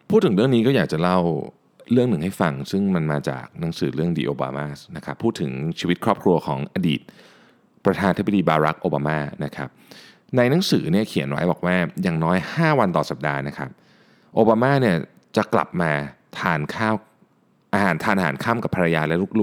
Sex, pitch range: male, 80-115 Hz